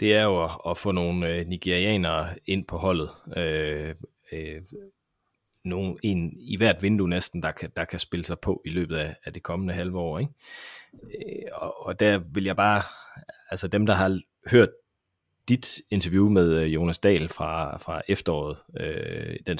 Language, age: Danish, 30-49